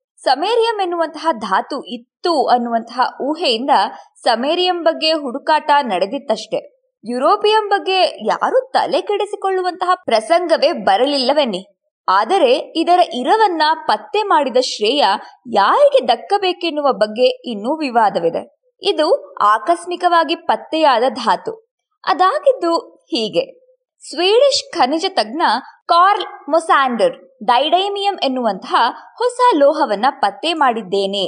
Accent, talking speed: native, 85 wpm